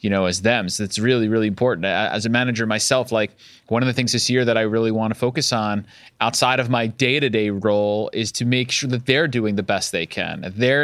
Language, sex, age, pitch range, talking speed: English, male, 30-49, 100-130 Hz, 255 wpm